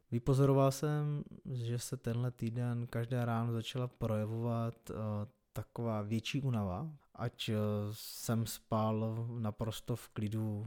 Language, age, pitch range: Czech, 20-39, 105-120 Hz